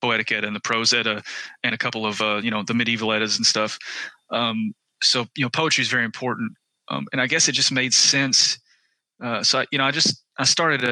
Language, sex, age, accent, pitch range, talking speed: English, male, 20-39, American, 115-135 Hz, 220 wpm